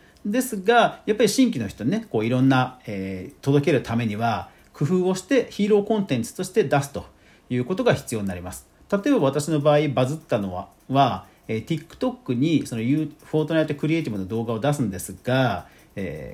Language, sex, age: Japanese, male, 40-59